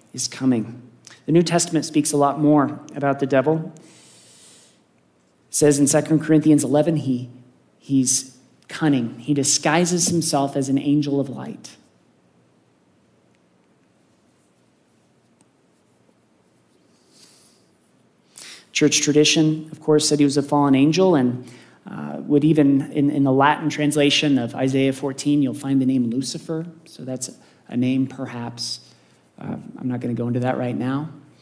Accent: American